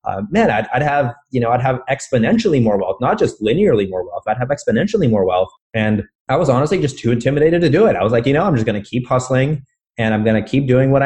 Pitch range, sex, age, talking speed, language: 110-140 Hz, male, 30-49, 270 wpm, English